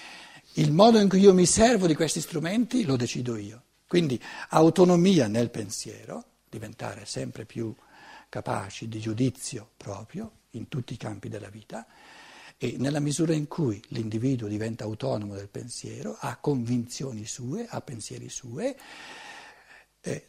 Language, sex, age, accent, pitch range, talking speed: Italian, male, 60-79, native, 115-175 Hz, 140 wpm